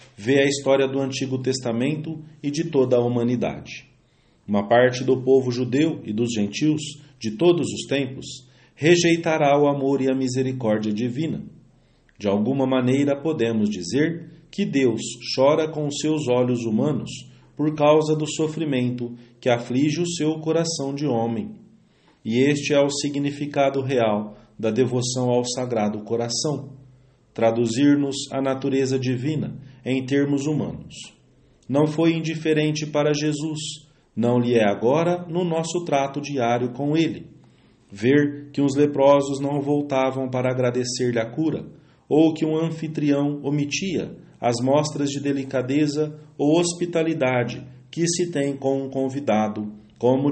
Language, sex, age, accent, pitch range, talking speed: English, male, 40-59, Brazilian, 125-150 Hz, 135 wpm